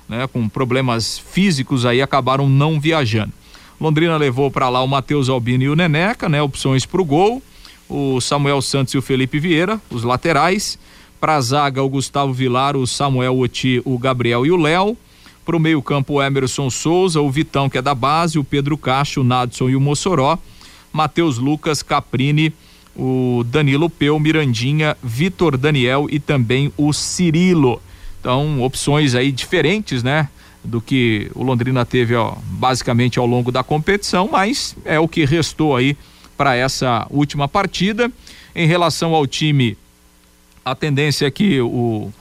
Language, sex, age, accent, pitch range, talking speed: Portuguese, male, 40-59, Brazilian, 130-155 Hz, 165 wpm